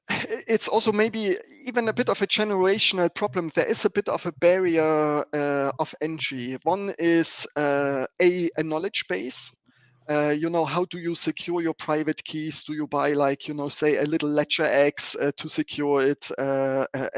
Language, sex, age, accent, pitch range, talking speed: Italian, male, 30-49, German, 145-180 Hz, 185 wpm